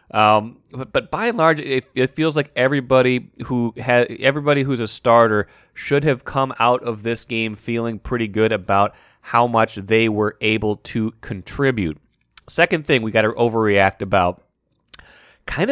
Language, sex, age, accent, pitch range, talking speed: English, male, 30-49, American, 110-135 Hz, 165 wpm